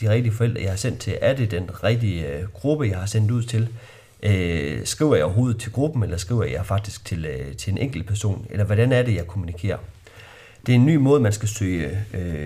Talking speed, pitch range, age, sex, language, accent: 215 wpm, 100-115 Hz, 30-49, male, Danish, native